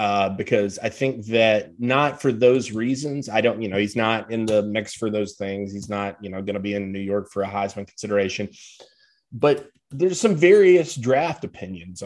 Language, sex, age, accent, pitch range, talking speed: English, male, 30-49, American, 100-135 Hz, 205 wpm